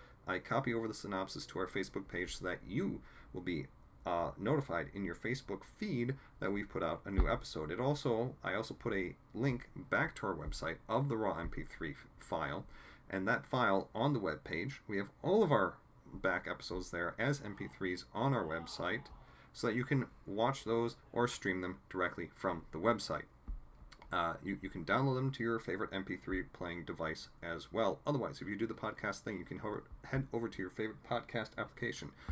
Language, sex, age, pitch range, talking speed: English, male, 40-59, 85-115 Hz, 200 wpm